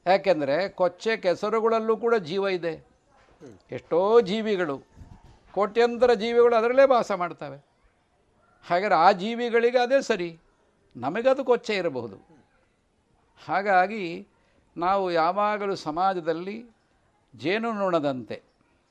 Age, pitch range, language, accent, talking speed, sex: 50-69, 165-215 Hz, Kannada, native, 85 wpm, male